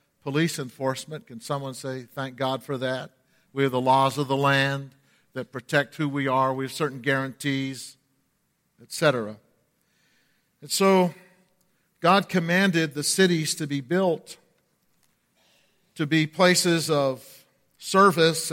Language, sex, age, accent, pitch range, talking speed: English, male, 50-69, American, 140-175 Hz, 130 wpm